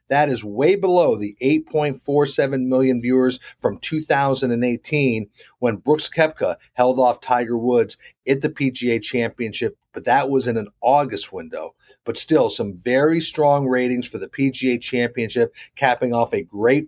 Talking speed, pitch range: 150 wpm, 120-140 Hz